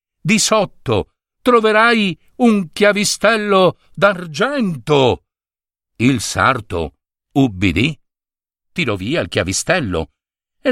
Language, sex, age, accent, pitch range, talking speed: Italian, male, 60-79, native, 100-170 Hz, 80 wpm